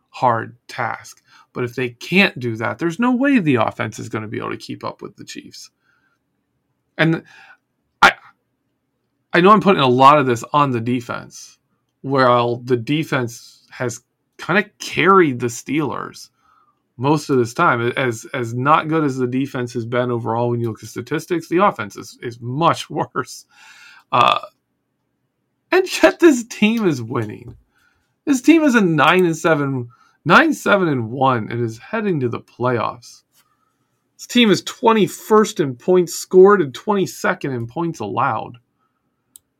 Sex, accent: male, American